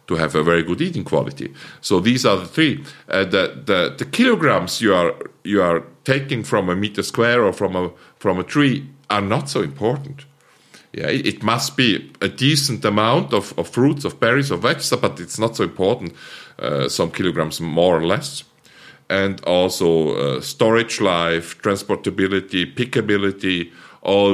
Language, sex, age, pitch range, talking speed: English, male, 50-69, 95-125 Hz, 175 wpm